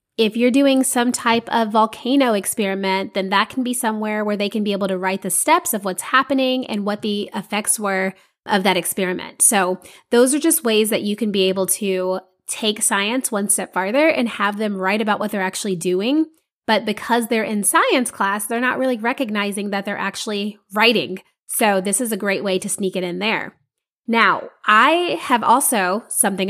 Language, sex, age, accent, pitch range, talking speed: English, female, 20-39, American, 190-230 Hz, 200 wpm